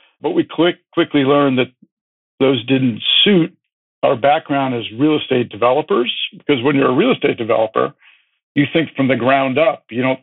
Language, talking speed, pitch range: English, 175 wpm, 120-145 Hz